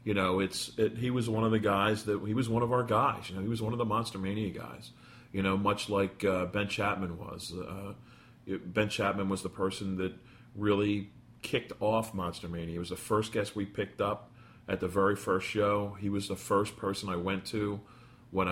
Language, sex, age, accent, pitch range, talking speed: English, male, 40-59, American, 95-115 Hz, 220 wpm